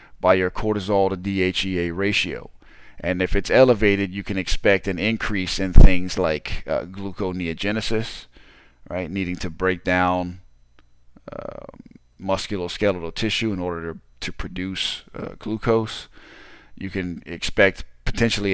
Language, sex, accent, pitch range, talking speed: English, male, American, 90-105 Hz, 125 wpm